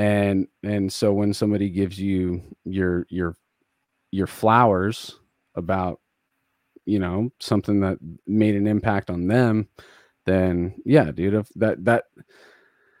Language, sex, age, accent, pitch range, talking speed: English, male, 30-49, American, 95-120 Hz, 120 wpm